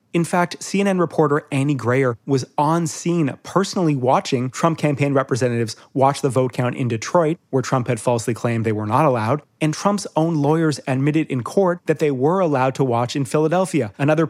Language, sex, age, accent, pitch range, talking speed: English, male, 30-49, American, 125-165 Hz, 190 wpm